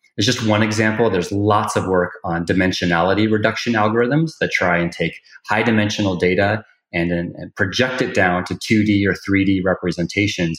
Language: English